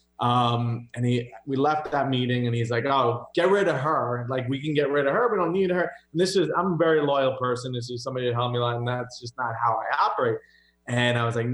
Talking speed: 275 wpm